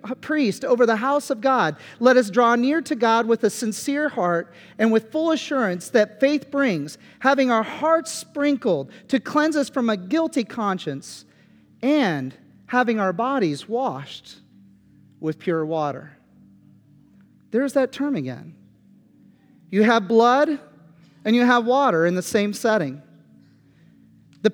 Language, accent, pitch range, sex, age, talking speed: English, American, 210-265 Hz, male, 40-59, 140 wpm